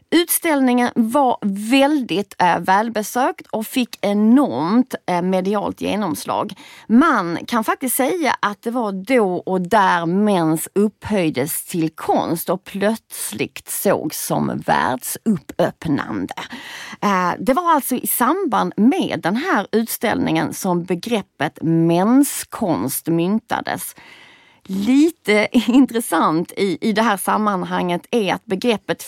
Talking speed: 105 wpm